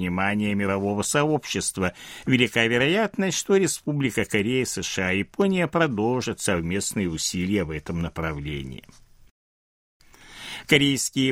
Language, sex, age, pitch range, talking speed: Russian, male, 60-79, 105-160 Hz, 95 wpm